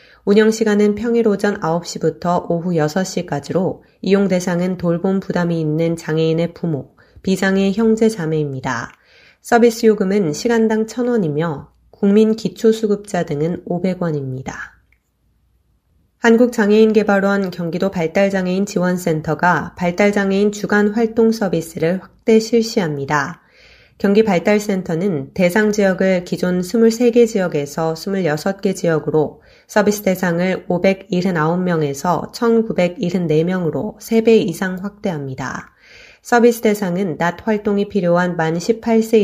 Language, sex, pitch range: Korean, female, 170-210 Hz